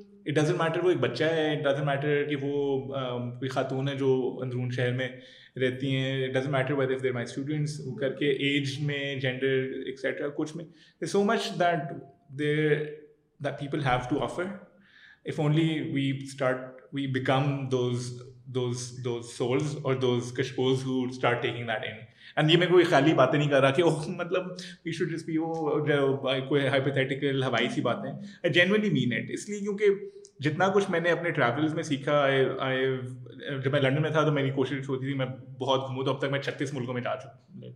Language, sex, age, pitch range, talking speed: Urdu, male, 20-39, 130-150 Hz, 160 wpm